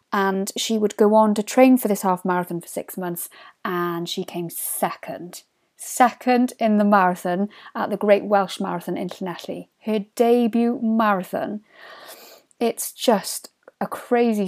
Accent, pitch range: British, 185-230 Hz